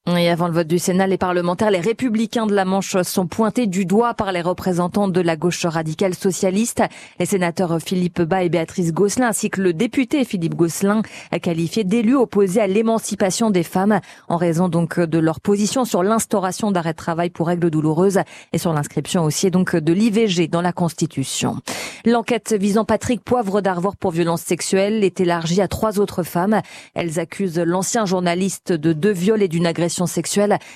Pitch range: 175-215 Hz